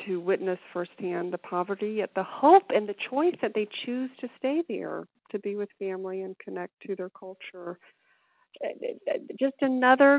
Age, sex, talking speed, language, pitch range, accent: 40-59, female, 165 wpm, English, 180-255 Hz, American